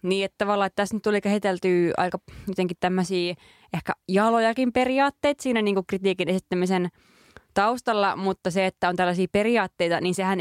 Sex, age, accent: female, 20-39, native